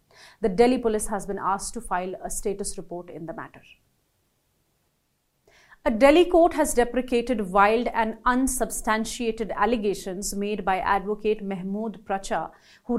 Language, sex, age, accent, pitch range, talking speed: English, female, 30-49, Indian, 195-230 Hz, 135 wpm